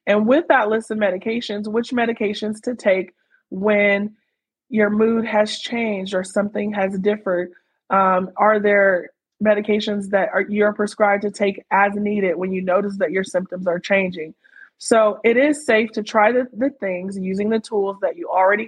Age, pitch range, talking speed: 20-39, 185-215 Hz, 170 wpm